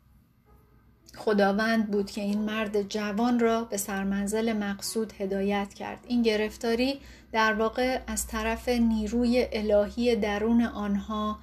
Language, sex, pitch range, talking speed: Persian, female, 200-230 Hz, 115 wpm